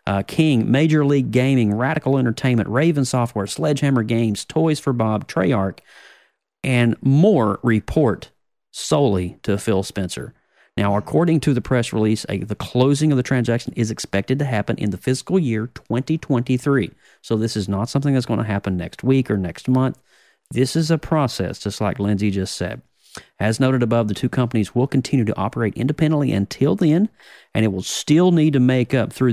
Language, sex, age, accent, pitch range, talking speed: English, male, 40-59, American, 105-135 Hz, 180 wpm